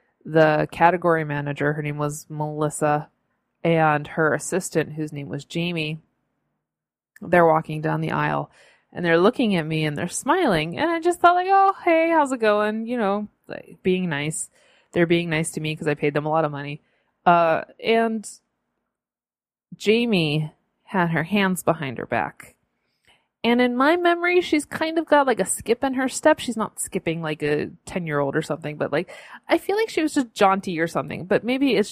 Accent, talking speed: American, 190 wpm